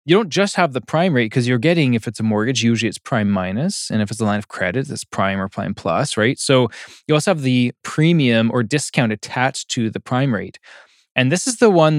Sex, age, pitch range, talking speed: male, 20-39, 115-150 Hz, 245 wpm